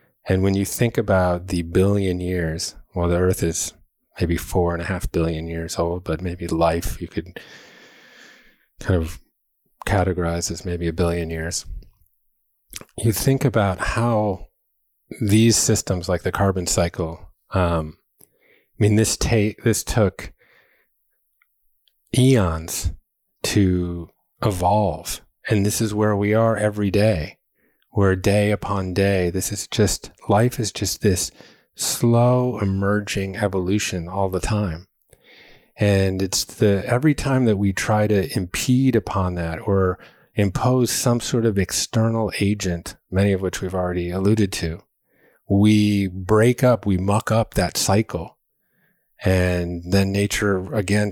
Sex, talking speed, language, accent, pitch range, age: male, 135 wpm, English, American, 90-105 Hz, 30-49